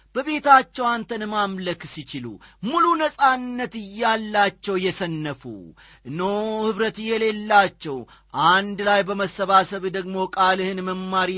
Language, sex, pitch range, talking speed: Amharic, male, 180-225 Hz, 90 wpm